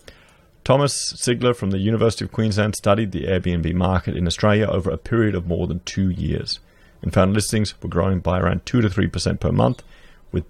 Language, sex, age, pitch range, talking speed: English, male, 30-49, 90-110 Hz, 185 wpm